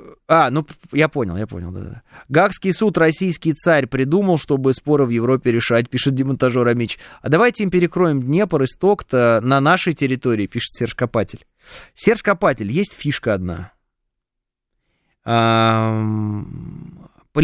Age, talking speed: 20-39, 140 wpm